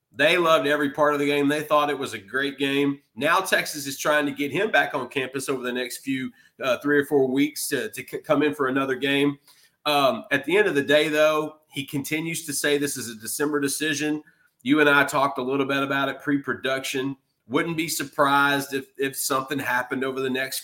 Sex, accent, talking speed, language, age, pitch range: male, American, 225 wpm, English, 30-49, 135-160 Hz